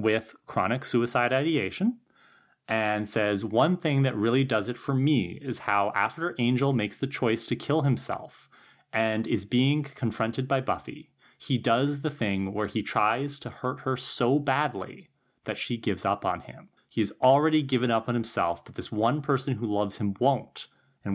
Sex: male